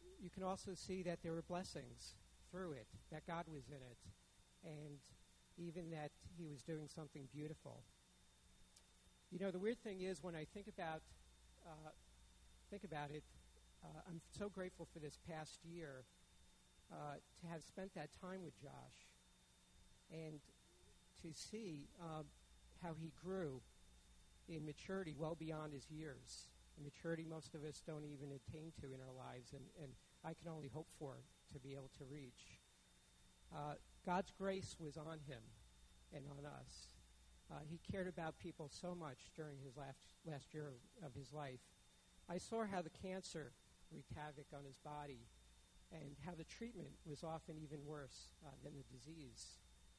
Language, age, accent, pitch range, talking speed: English, 50-69, American, 130-165 Hz, 165 wpm